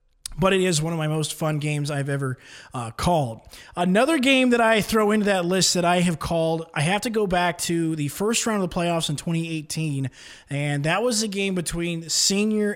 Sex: male